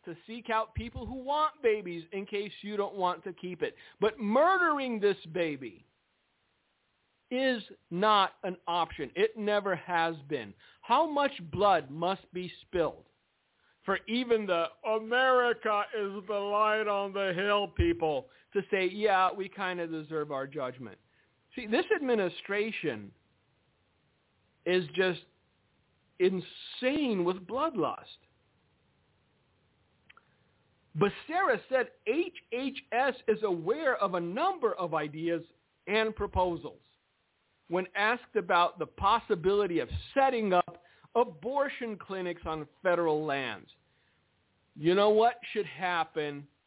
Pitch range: 180-245 Hz